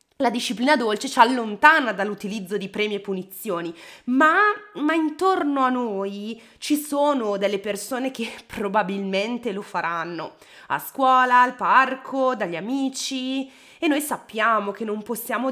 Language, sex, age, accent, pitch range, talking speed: Italian, female, 20-39, native, 205-295 Hz, 135 wpm